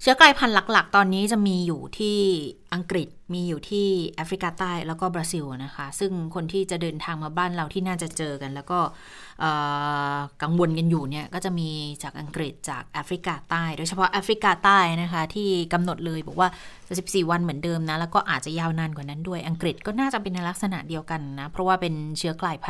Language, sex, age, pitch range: Thai, female, 20-39, 160-200 Hz